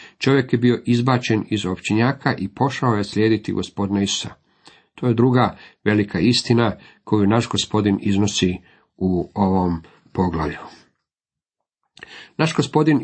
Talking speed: 120 wpm